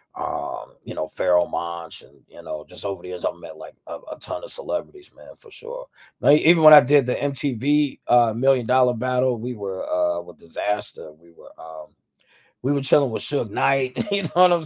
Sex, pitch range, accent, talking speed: male, 90-140 Hz, American, 215 wpm